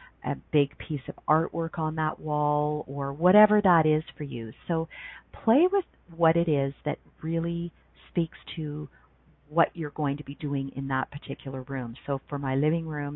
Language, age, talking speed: English, 40-59, 180 wpm